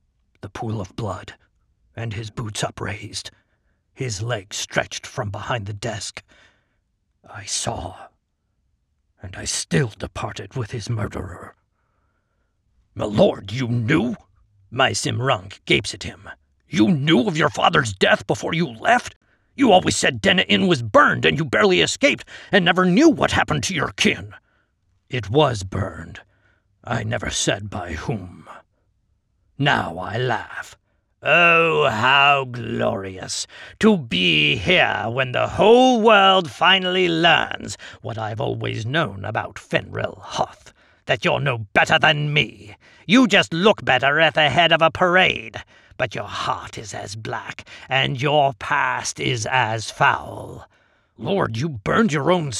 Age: 50-69